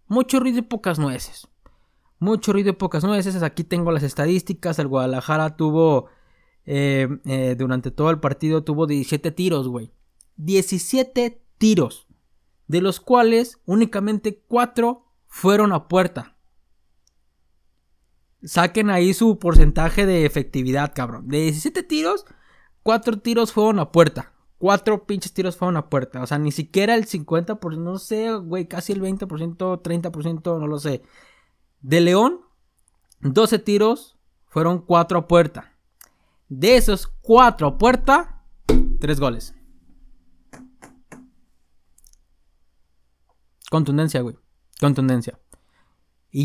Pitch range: 140-205 Hz